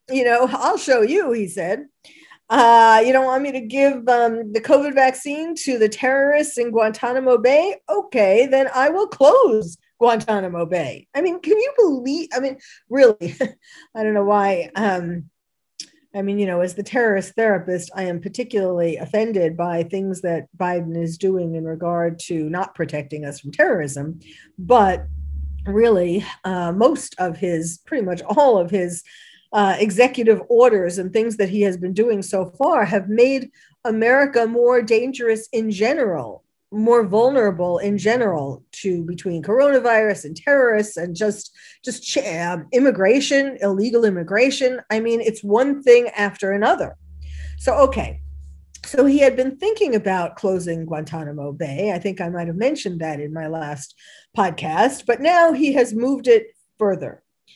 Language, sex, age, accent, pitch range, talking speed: English, female, 50-69, American, 175-255 Hz, 155 wpm